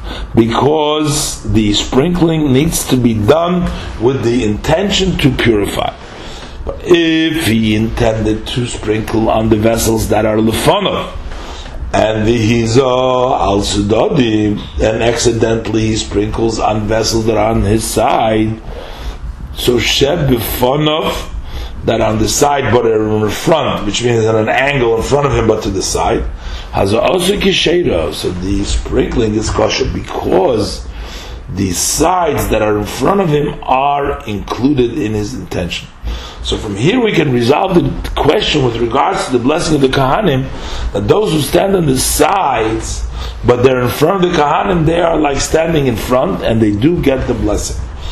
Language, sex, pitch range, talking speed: English, male, 105-140 Hz, 160 wpm